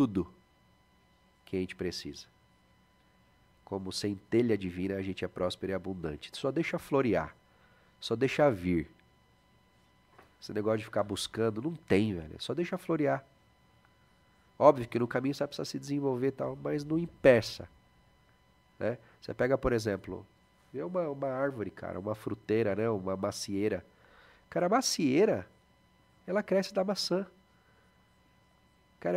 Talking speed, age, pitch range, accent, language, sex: 130 wpm, 40-59, 90-120 Hz, Brazilian, Portuguese, male